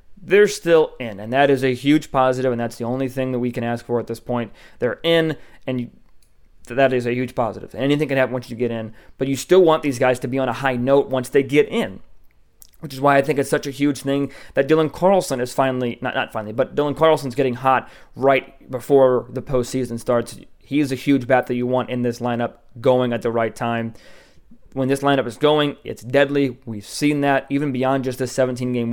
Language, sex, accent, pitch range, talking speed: English, male, American, 120-140 Hz, 230 wpm